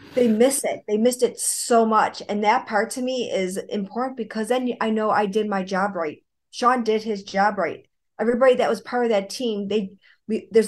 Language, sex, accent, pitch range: English, female, American, 195-235 Hz